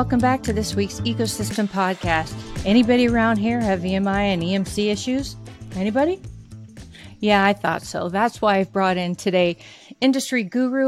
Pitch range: 170-220 Hz